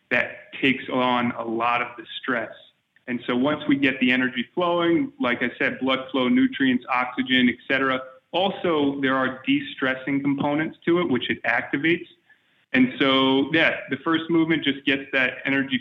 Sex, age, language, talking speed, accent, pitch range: male, 30-49, English, 170 wpm, American, 125-190 Hz